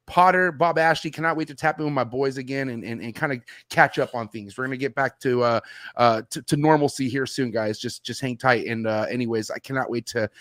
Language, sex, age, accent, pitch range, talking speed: English, male, 30-49, American, 120-165 Hz, 260 wpm